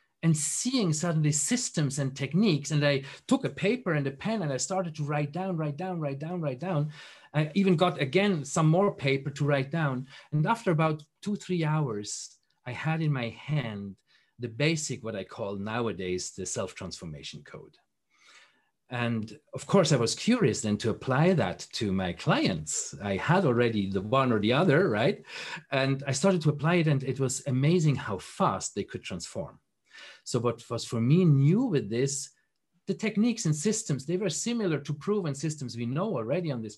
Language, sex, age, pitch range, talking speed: English, male, 40-59, 135-180 Hz, 190 wpm